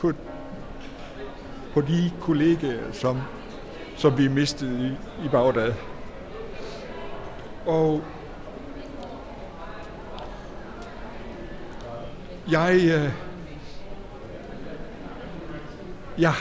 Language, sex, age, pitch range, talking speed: Danish, male, 60-79, 125-150 Hz, 50 wpm